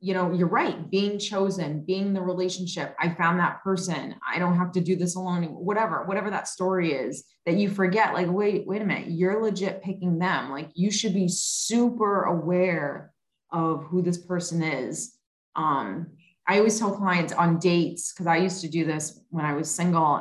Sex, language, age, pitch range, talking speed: female, English, 30-49, 165-195 Hz, 195 wpm